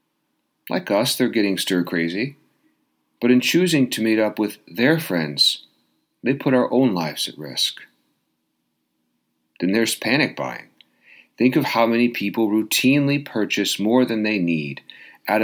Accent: American